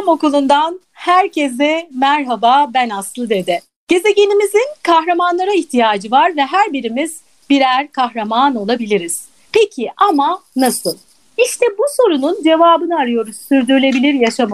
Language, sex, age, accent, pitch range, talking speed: Turkish, female, 40-59, native, 245-340 Hz, 105 wpm